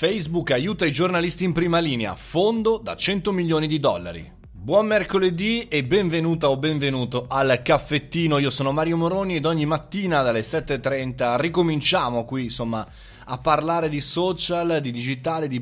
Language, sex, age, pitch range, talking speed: Italian, male, 20-39, 110-160 Hz, 155 wpm